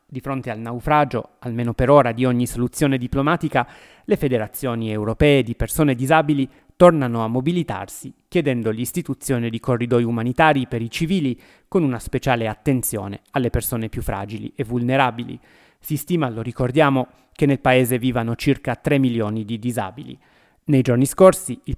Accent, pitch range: native, 115-145 Hz